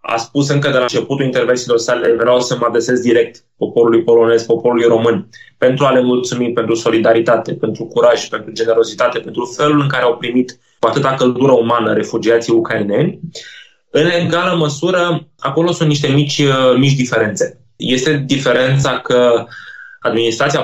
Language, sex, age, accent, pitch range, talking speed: Romanian, male, 20-39, native, 115-155 Hz, 150 wpm